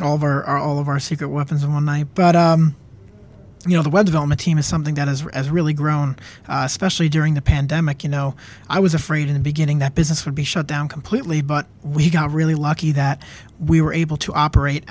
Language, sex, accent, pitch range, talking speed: English, male, American, 140-160 Hz, 235 wpm